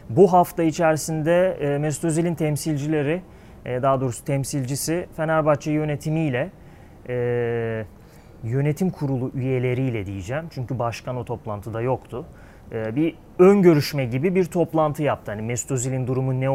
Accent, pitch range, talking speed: native, 120-155 Hz, 110 wpm